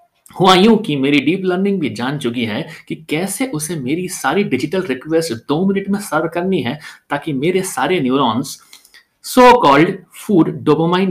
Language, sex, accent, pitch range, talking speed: Hindi, male, native, 140-215 Hz, 115 wpm